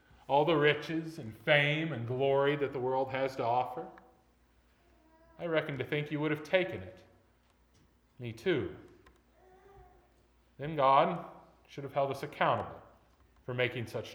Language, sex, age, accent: English, male, 40-59, American